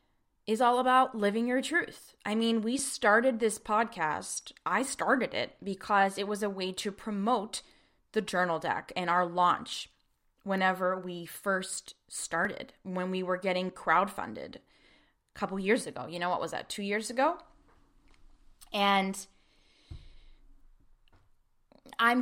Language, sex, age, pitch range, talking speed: English, female, 20-39, 185-235 Hz, 140 wpm